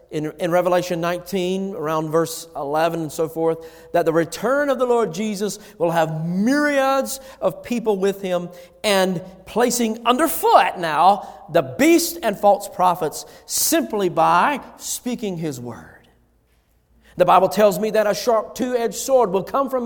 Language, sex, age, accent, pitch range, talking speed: English, male, 50-69, American, 210-310 Hz, 150 wpm